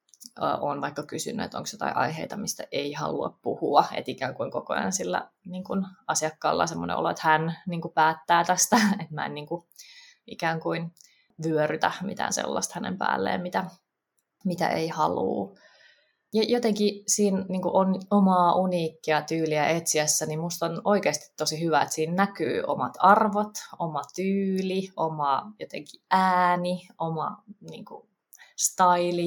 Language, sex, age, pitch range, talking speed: Finnish, female, 20-39, 155-190 Hz, 150 wpm